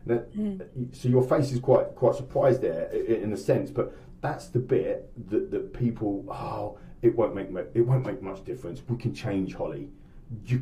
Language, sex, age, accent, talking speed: English, male, 30-49, British, 185 wpm